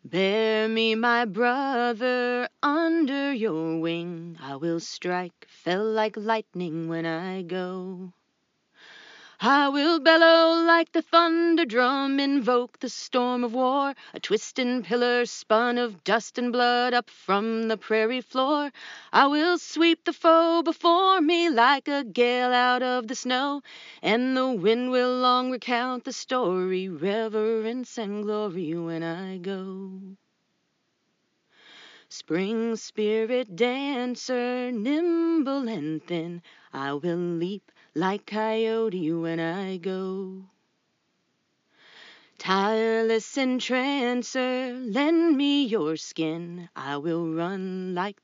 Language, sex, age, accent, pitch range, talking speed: English, female, 30-49, American, 190-260 Hz, 115 wpm